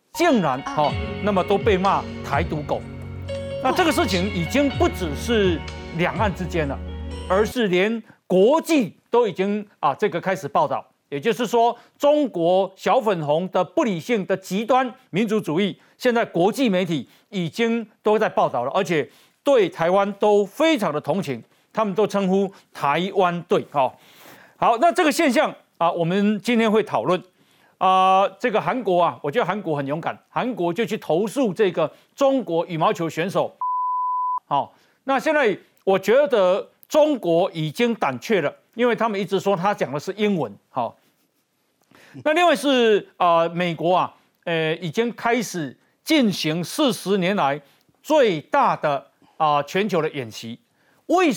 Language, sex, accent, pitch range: Chinese, male, native, 170-235 Hz